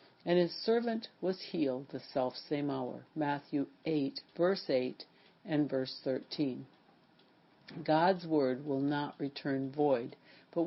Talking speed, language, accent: 125 wpm, English, American